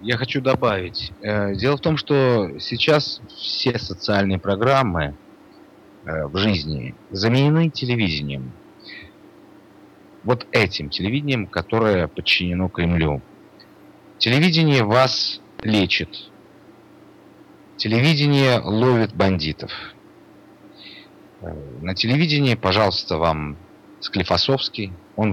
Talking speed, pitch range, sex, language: 80 wpm, 80-115 Hz, male, Russian